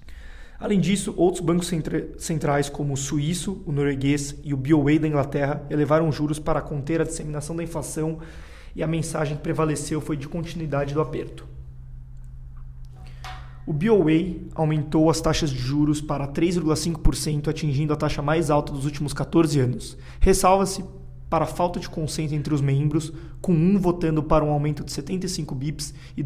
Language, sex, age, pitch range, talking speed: Portuguese, male, 20-39, 145-165 Hz, 160 wpm